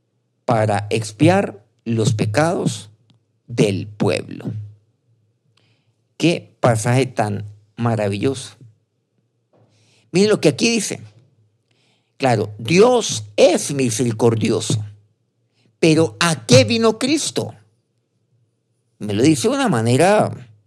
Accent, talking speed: Mexican, 85 wpm